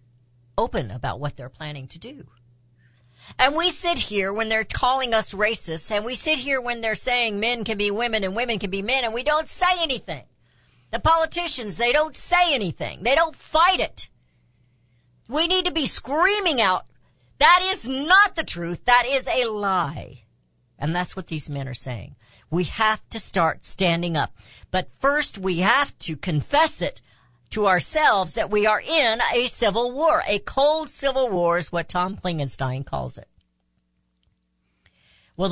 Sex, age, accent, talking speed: female, 50-69, American, 170 wpm